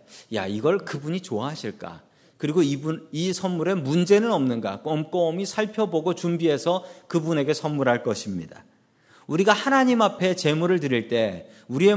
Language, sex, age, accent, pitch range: Korean, male, 40-59, native, 150-200 Hz